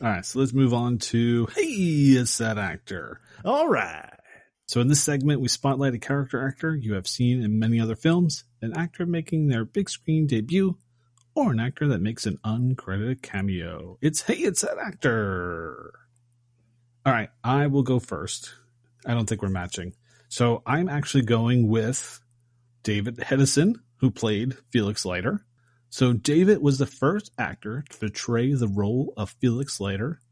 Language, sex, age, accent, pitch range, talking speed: English, male, 30-49, American, 110-140 Hz, 165 wpm